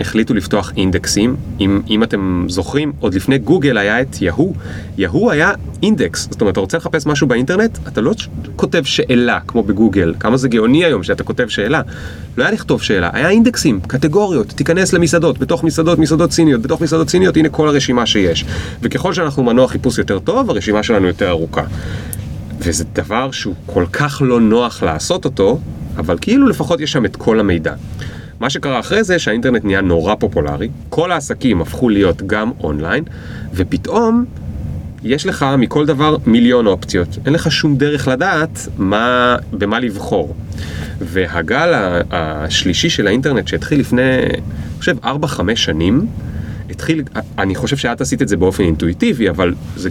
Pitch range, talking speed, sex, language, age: 90-150 Hz, 155 wpm, male, Hebrew, 30-49